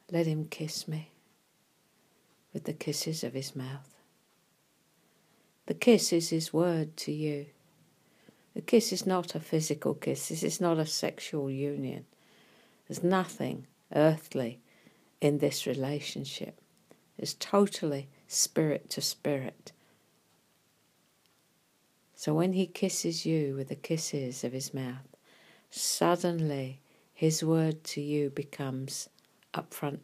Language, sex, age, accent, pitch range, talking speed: English, female, 60-79, British, 140-170 Hz, 120 wpm